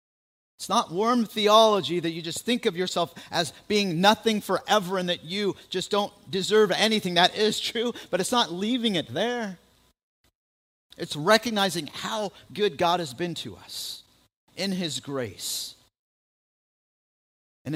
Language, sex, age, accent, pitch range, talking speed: English, male, 50-69, American, 130-180 Hz, 145 wpm